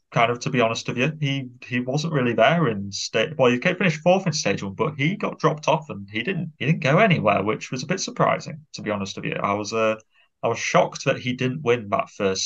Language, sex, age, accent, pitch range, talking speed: English, male, 20-39, British, 105-135 Hz, 275 wpm